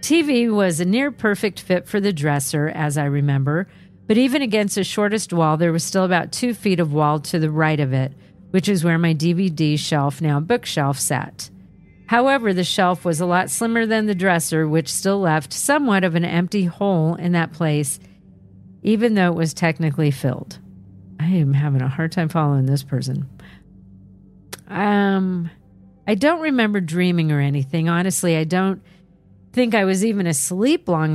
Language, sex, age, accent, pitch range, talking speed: English, female, 50-69, American, 155-205 Hz, 175 wpm